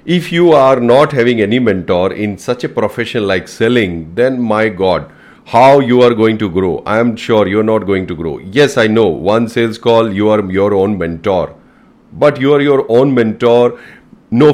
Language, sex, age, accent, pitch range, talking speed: Hindi, male, 40-59, native, 100-120 Hz, 200 wpm